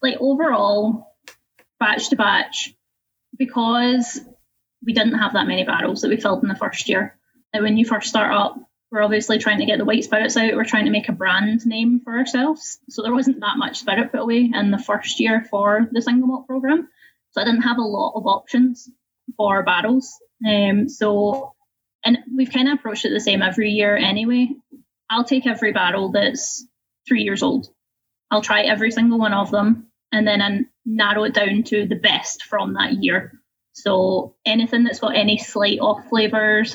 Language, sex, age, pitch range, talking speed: English, female, 10-29, 210-250 Hz, 190 wpm